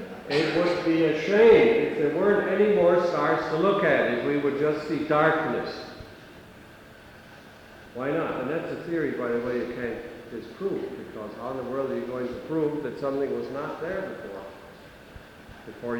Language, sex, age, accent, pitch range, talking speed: English, male, 60-79, American, 135-185 Hz, 185 wpm